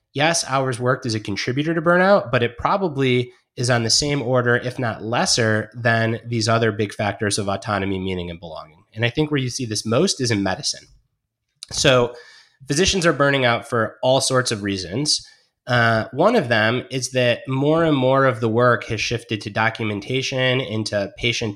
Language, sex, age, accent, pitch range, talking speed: English, male, 30-49, American, 110-130 Hz, 190 wpm